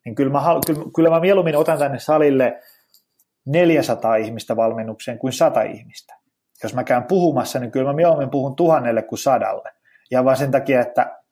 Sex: male